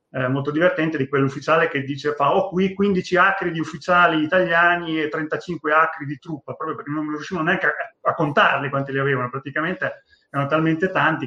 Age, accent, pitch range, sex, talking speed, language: 30-49, native, 135-170 Hz, male, 175 wpm, Italian